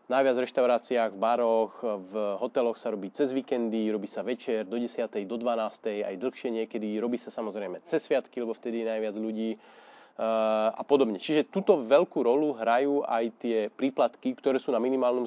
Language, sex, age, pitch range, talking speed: Slovak, male, 30-49, 115-145 Hz, 175 wpm